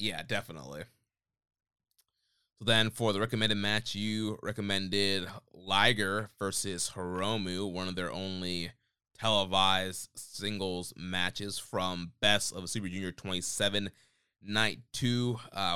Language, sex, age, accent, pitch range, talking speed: English, male, 20-39, American, 95-110 Hz, 115 wpm